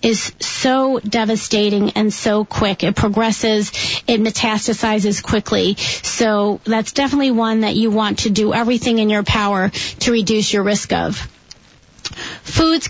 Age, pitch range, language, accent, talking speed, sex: 40-59, 215-255 Hz, English, American, 140 wpm, female